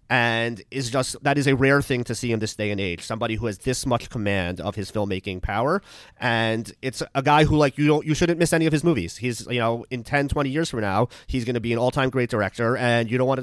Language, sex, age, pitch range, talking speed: English, male, 30-49, 110-135 Hz, 275 wpm